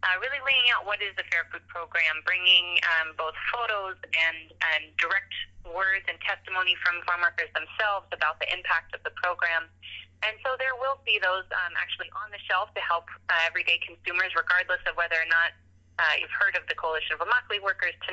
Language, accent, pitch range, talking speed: English, American, 165-210 Hz, 200 wpm